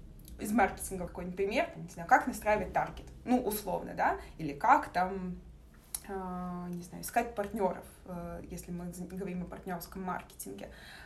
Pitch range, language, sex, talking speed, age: 185-235 Hz, Russian, female, 135 wpm, 20-39